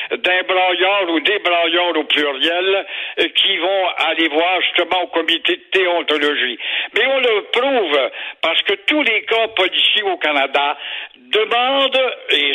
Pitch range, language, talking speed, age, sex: 175-240 Hz, French, 145 wpm, 60-79, male